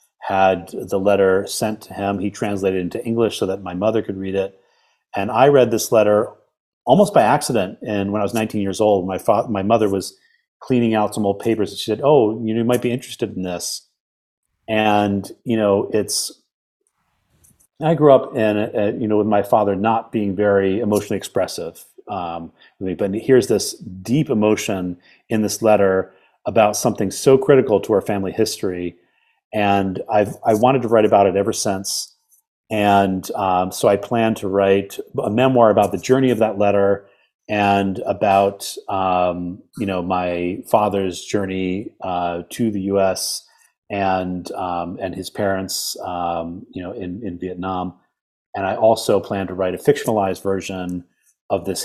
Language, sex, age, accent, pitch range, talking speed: English, male, 30-49, American, 95-110 Hz, 175 wpm